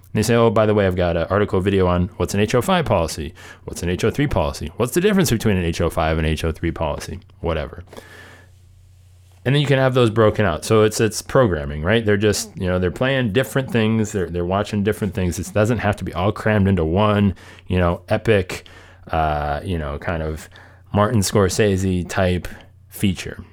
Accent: American